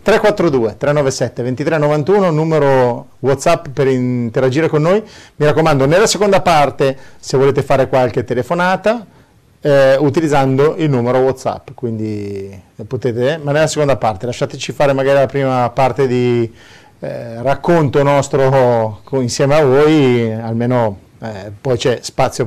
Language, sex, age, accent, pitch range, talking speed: Italian, male, 40-59, native, 120-145 Hz, 130 wpm